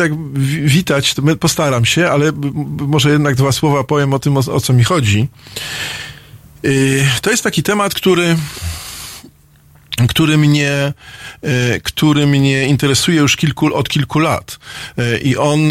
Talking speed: 145 wpm